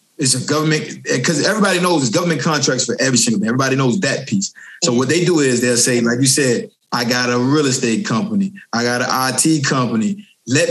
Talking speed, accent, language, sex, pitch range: 215 wpm, American, English, male, 130-170 Hz